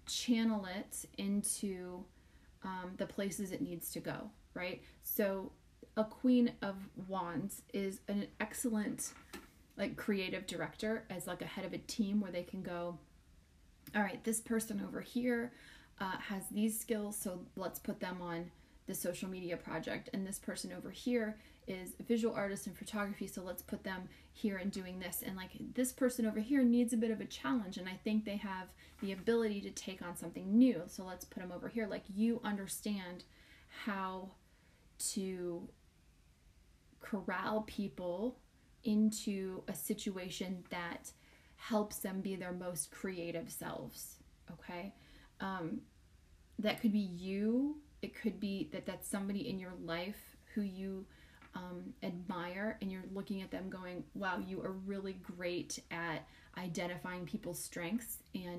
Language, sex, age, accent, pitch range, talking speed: English, female, 30-49, American, 180-220 Hz, 160 wpm